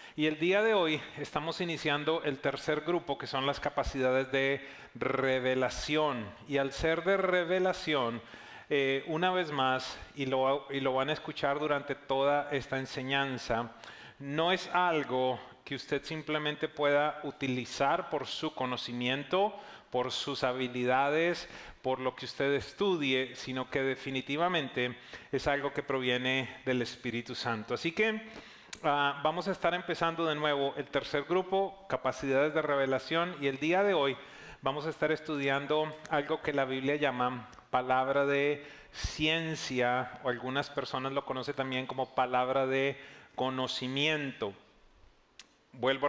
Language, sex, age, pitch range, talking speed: English, male, 40-59, 130-155 Hz, 140 wpm